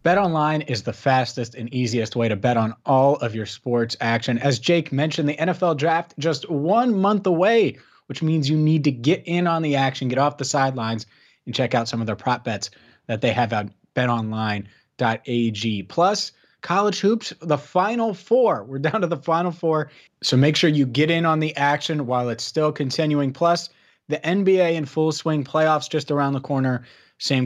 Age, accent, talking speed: 30-49, American, 195 wpm